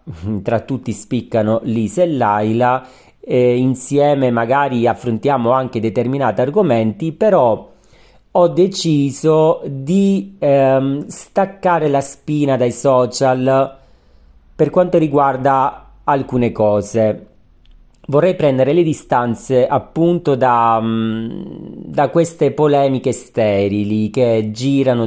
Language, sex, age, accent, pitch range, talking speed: Italian, male, 40-59, native, 115-135 Hz, 95 wpm